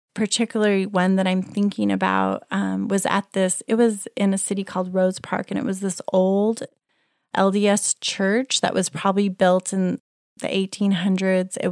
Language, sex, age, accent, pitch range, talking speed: English, female, 30-49, American, 185-215 Hz, 170 wpm